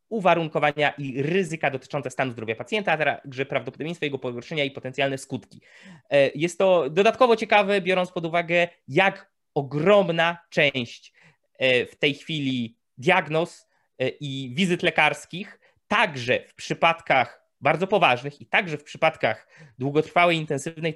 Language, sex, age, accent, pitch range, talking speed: Polish, male, 20-39, native, 130-170 Hz, 125 wpm